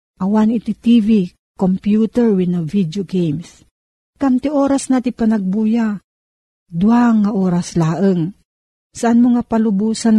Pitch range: 170-220 Hz